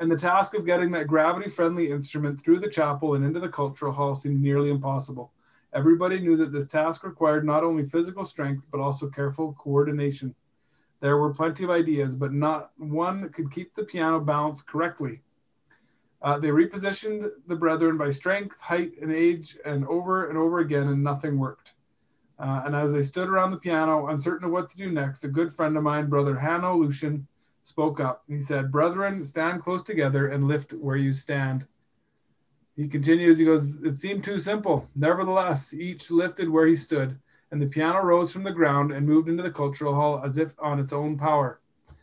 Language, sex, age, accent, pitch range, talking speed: English, male, 30-49, American, 140-170 Hz, 190 wpm